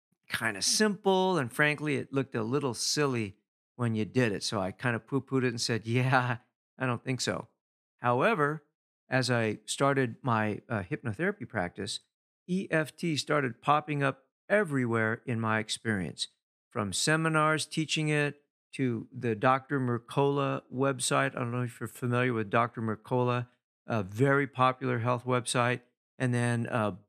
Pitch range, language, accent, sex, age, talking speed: 115-140 Hz, English, American, male, 50-69, 155 wpm